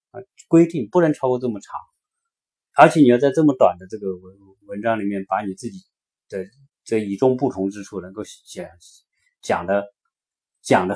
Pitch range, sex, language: 95-135 Hz, male, Chinese